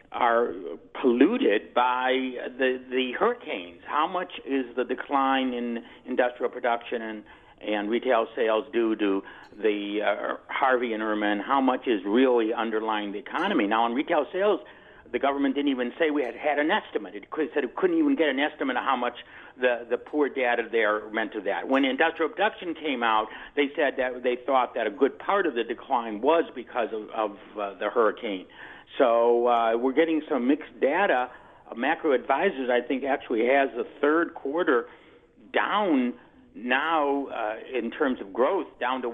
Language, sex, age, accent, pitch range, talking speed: English, male, 50-69, American, 115-145 Hz, 175 wpm